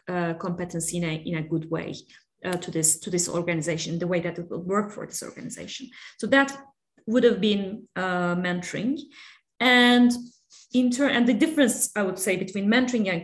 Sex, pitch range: female, 180-235 Hz